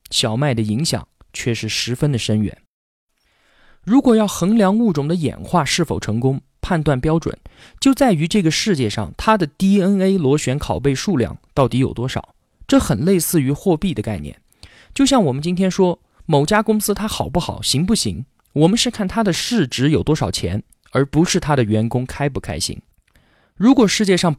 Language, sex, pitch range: Chinese, male, 115-185 Hz